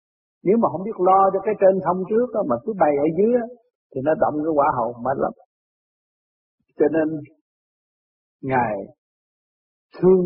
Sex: male